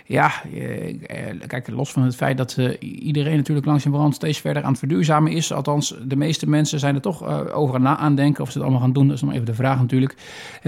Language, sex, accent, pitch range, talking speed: Dutch, male, Dutch, 135-155 Hz, 255 wpm